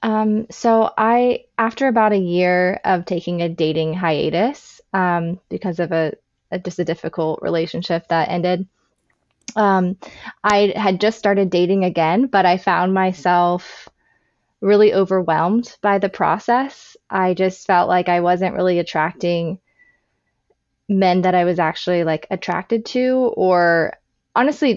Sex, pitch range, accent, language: female, 175-215 Hz, American, English